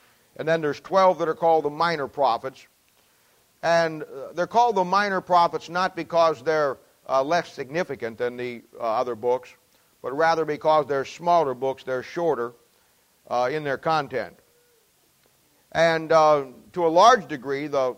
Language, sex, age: English, male, 50-69